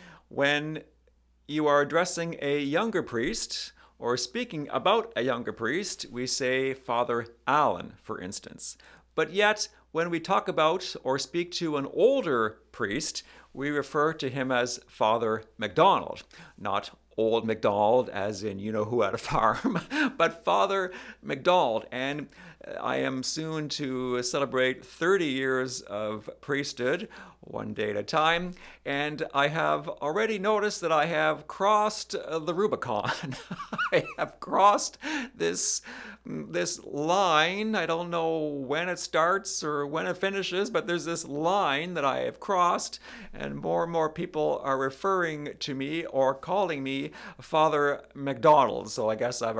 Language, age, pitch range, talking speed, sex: English, 50-69, 125-170 Hz, 140 wpm, male